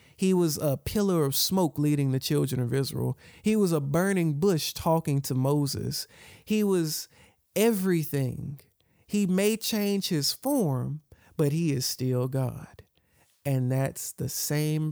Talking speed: 145 wpm